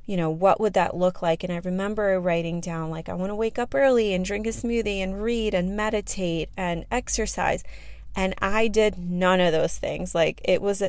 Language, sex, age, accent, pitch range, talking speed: English, female, 30-49, American, 175-210 Hz, 215 wpm